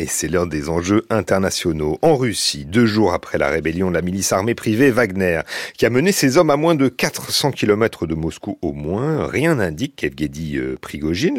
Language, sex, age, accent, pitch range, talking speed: French, male, 40-59, French, 85-135 Hz, 195 wpm